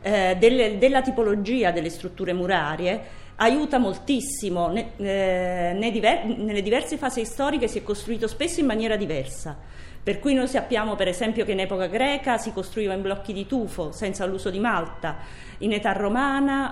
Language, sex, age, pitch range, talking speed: Italian, female, 40-59, 185-235 Hz, 155 wpm